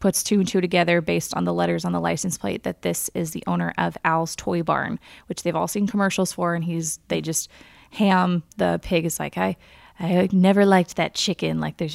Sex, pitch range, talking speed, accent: female, 165-205 Hz, 225 wpm, American